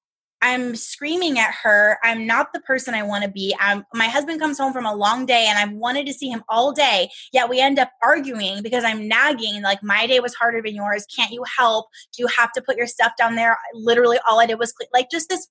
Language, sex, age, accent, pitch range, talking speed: English, female, 10-29, American, 205-265 Hz, 245 wpm